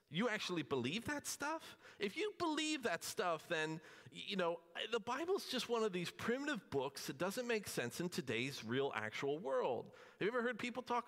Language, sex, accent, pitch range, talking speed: English, male, American, 150-215 Hz, 200 wpm